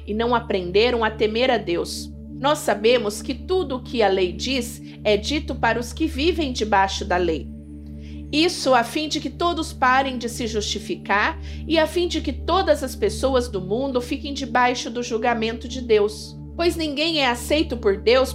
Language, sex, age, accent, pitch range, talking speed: Portuguese, female, 50-69, Brazilian, 200-275 Hz, 185 wpm